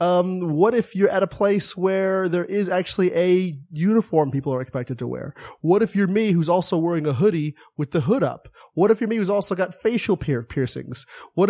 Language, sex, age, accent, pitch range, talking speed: English, male, 30-49, American, 140-180 Hz, 220 wpm